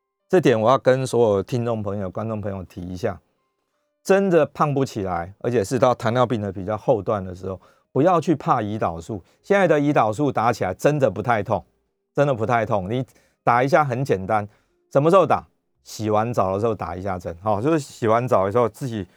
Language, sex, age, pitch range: Chinese, male, 30-49, 95-140 Hz